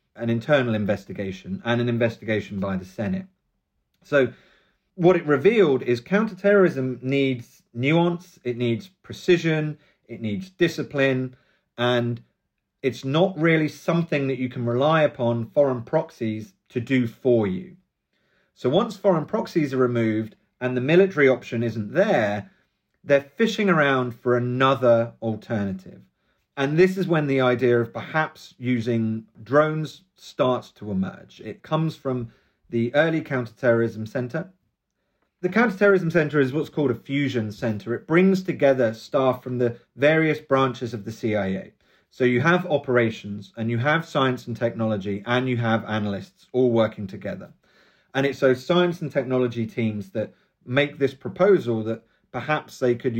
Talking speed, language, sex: 145 wpm, English, male